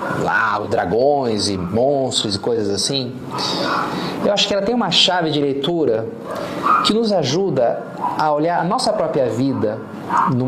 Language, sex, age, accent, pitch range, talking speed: Portuguese, male, 40-59, Brazilian, 125-195 Hz, 155 wpm